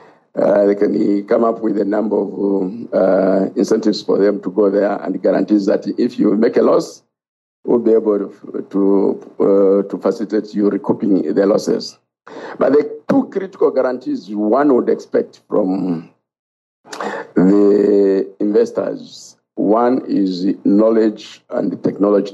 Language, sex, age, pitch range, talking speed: English, male, 50-69, 100-110 Hz, 135 wpm